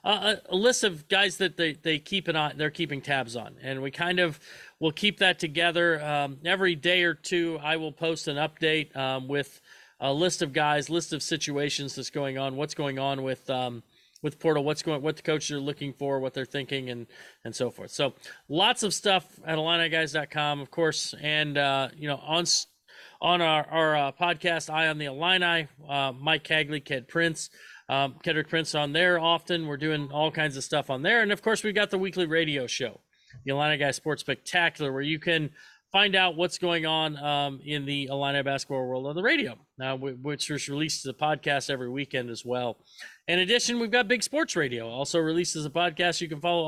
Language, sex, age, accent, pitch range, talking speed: English, male, 40-59, American, 140-170 Hz, 210 wpm